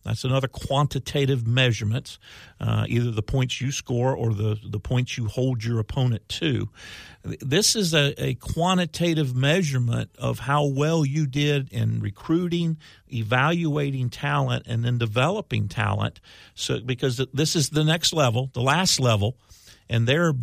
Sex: male